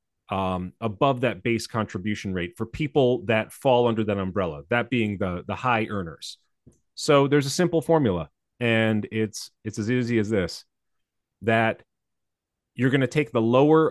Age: 30-49